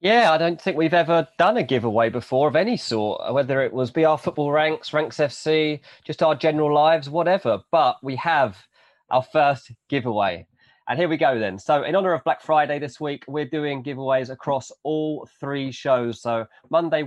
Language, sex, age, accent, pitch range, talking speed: English, male, 30-49, British, 115-165 Hz, 190 wpm